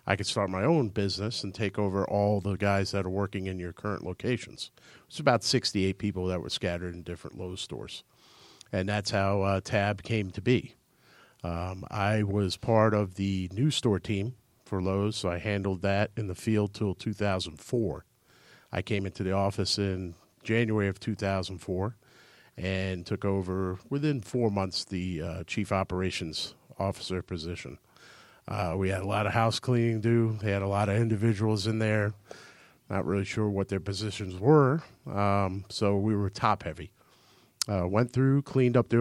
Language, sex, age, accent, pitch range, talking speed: English, male, 50-69, American, 95-110 Hz, 175 wpm